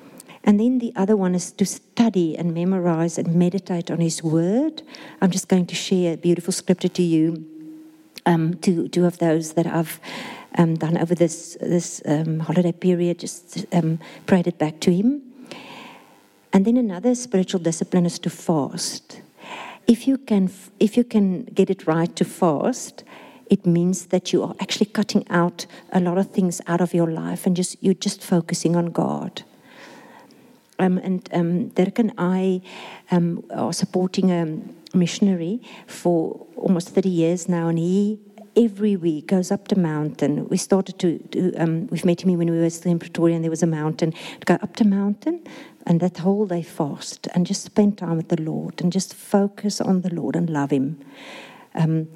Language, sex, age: English, female, 50-69